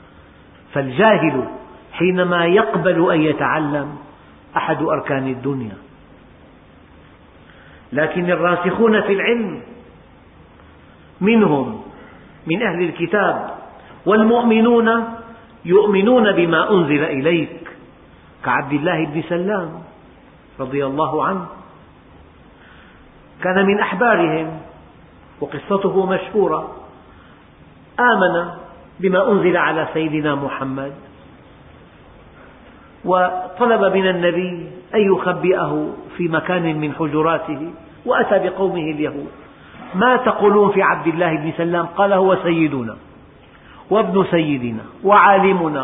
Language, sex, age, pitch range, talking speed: Arabic, male, 50-69, 155-200 Hz, 85 wpm